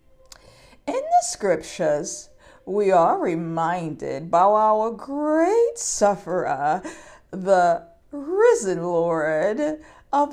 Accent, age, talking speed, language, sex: American, 50-69, 80 wpm, English, female